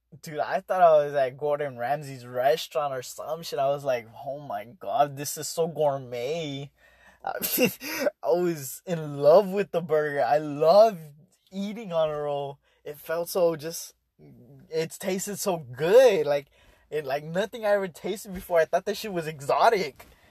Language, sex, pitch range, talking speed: English, male, 130-185 Hz, 170 wpm